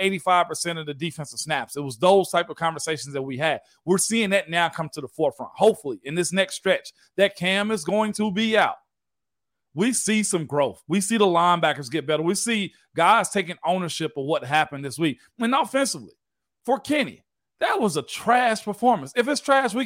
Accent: American